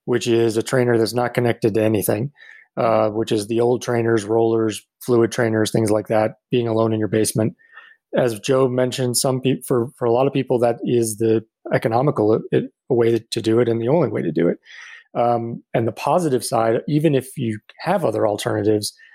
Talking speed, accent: 205 wpm, American